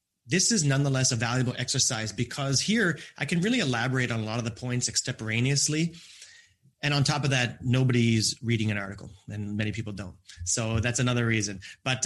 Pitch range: 115-140 Hz